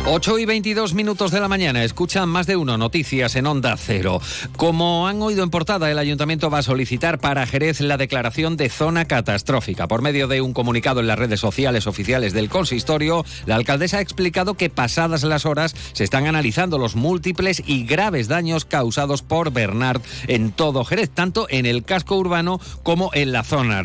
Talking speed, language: 190 wpm, Spanish